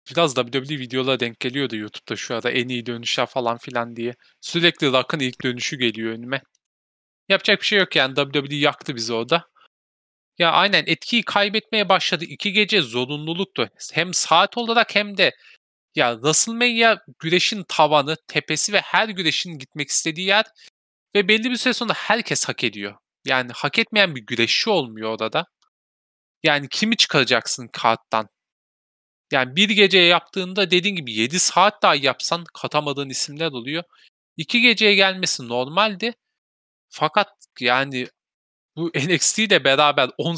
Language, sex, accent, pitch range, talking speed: Turkish, male, native, 125-195 Hz, 145 wpm